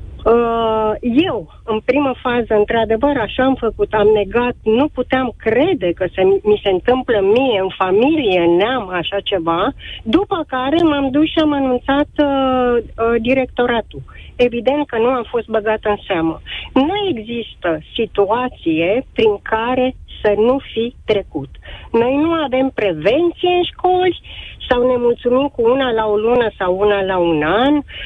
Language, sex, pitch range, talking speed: Romanian, female, 205-285 Hz, 145 wpm